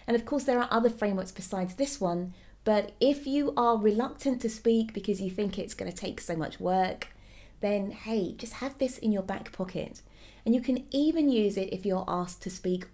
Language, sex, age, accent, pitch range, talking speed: English, female, 30-49, British, 190-245 Hz, 220 wpm